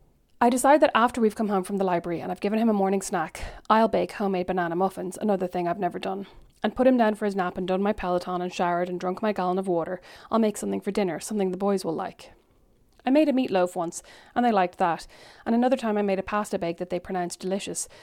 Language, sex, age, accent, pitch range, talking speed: English, female, 30-49, Irish, 180-215 Hz, 255 wpm